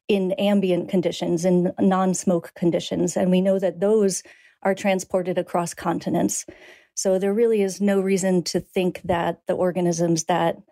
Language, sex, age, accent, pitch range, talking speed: English, female, 40-59, American, 180-200 Hz, 150 wpm